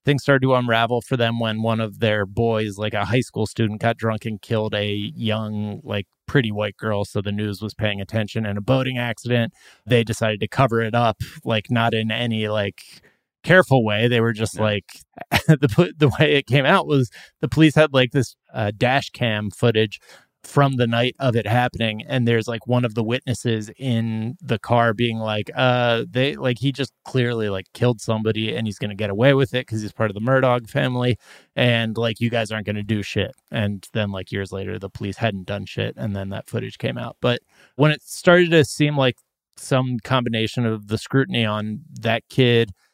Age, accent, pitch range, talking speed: 20-39, American, 105-125 Hz, 210 wpm